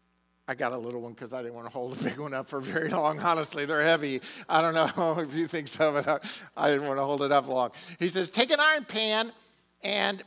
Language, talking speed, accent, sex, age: English, 255 wpm, American, male, 50-69